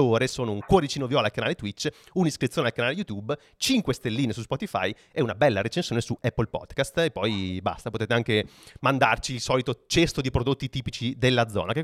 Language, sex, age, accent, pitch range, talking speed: Italian, male, 30-49, native, 110-150 Hz, 190 wpm